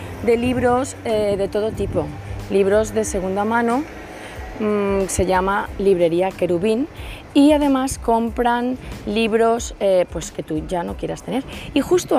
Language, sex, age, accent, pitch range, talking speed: Spanish, female, 20-39, Spanish, 180-235 Hz, 135 wpm